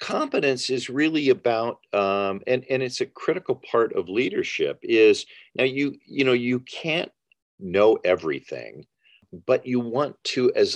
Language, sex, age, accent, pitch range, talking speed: English, male, 50-69, American, 355-435 Hz, 150 wpm